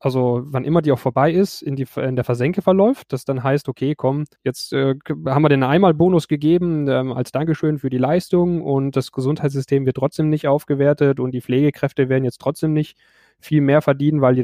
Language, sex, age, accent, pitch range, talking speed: German, male, 10-29, German, 130-155 Hz, 210 wpm